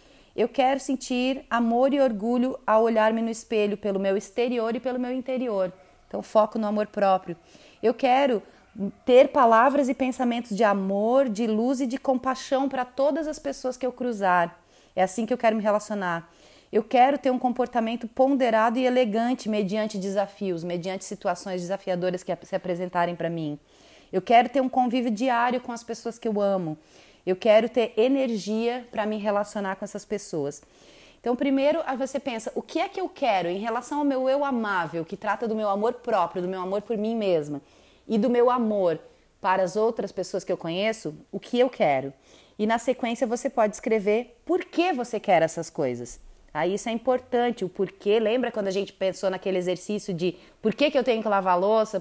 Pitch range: 195-250 Hz